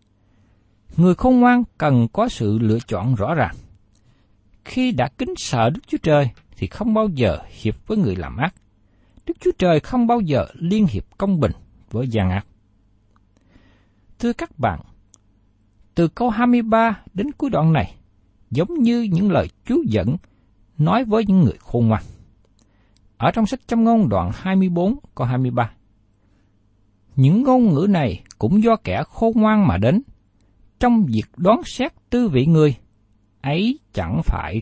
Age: 60-79